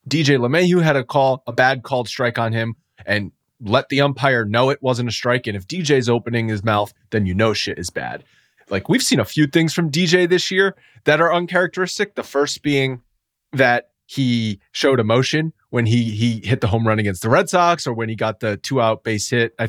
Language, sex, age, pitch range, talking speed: English, male, 30-49, 120-170 Hz, 225 wpm